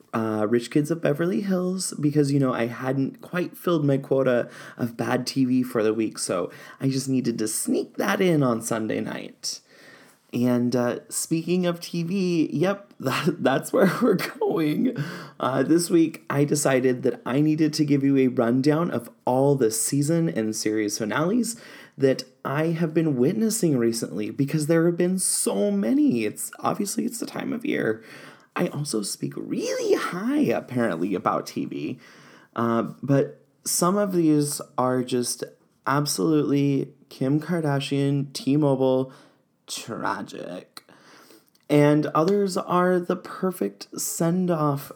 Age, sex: 20-39, male